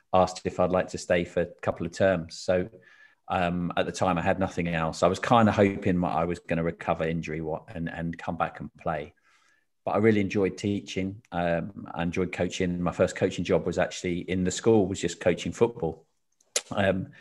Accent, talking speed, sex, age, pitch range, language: British, 215 wpm, male, 40-59, 85-95 Hz, English